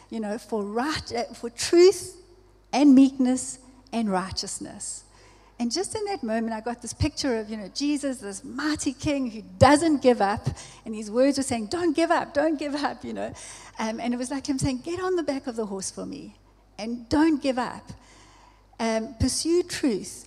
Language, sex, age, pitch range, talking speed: English, female, 60-79, 205-275 Hz, 195 wpm